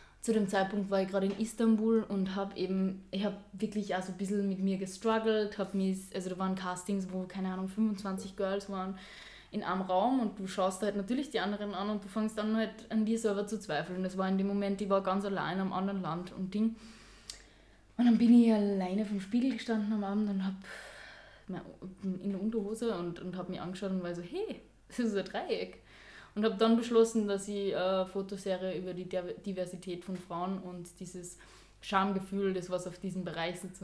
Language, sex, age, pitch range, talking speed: German, female, 10-29, 185-205 Hz, 205 wpm